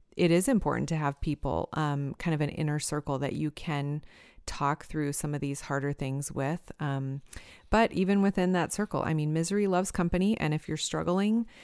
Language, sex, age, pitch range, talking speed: English, female, 30-49, 150-180 Hz, 195 wpm